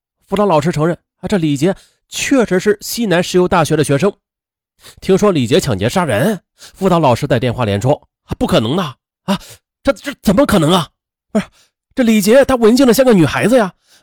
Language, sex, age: Chinese, male, 30-49